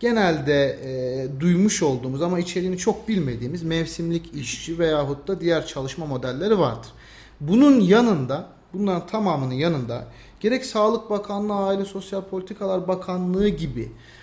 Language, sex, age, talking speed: Turkish, male, 40-59, 120 wpm